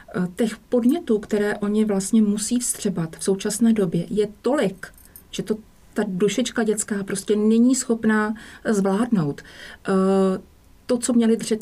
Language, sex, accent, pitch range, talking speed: English, female, Czech, 195-220 Hz, 125 wpm